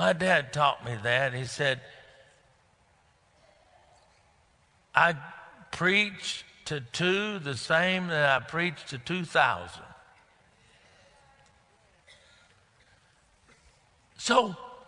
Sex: male